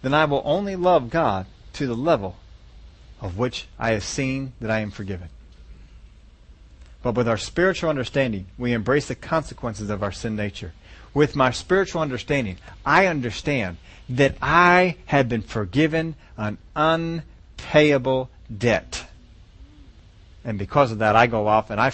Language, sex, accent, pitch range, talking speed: English, male, American, 95-140 Hz, 150 wpm